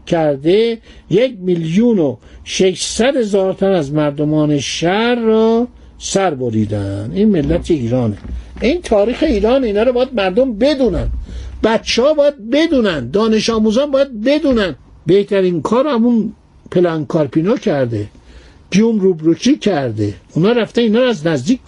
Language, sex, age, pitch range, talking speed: Persian, male, 60-79, 160-235 Hz, 135 wpm